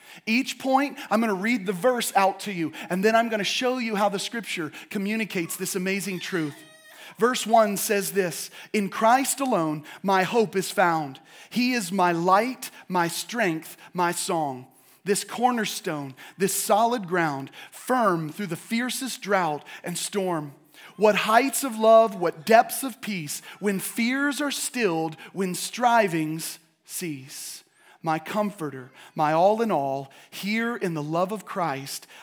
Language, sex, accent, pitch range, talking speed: English, male, American, 165-220 Hz, 155 wpm